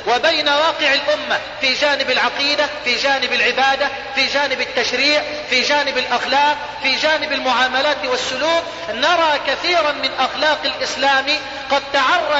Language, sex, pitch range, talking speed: Arabic, male, 255-305 Hz, 125 wpm